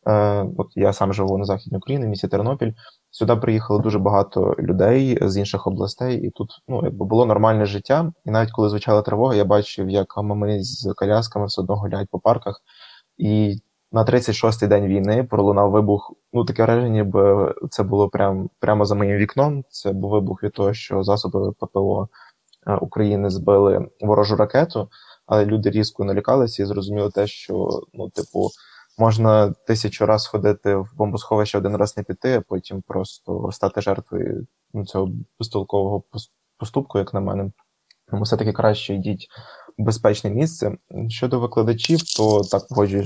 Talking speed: 155 wpm